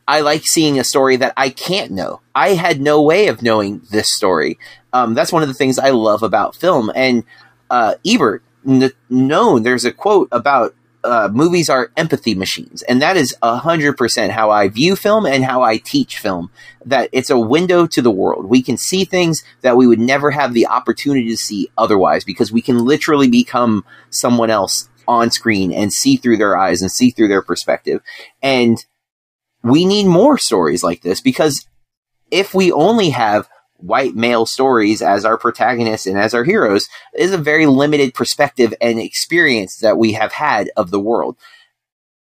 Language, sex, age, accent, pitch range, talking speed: English, male, 30-49, American, 115-150 Hz, 185 wpm